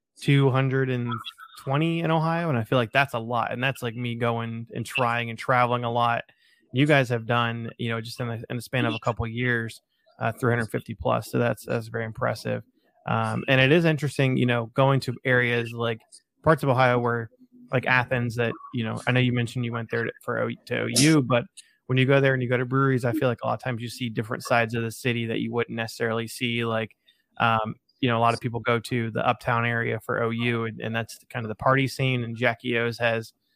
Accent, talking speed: American, 250 wpm